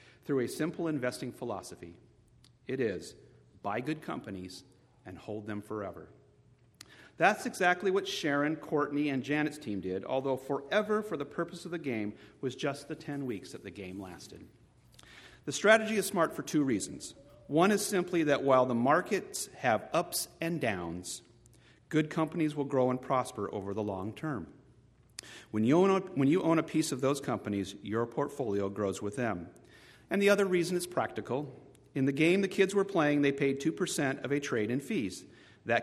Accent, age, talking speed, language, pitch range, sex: American, 40-59, 175 wpm, English, 110-155 Hz, male